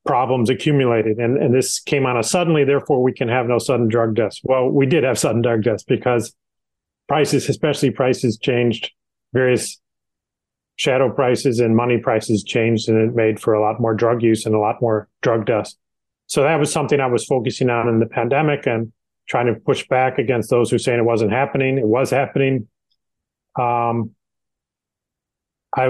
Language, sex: Danish, male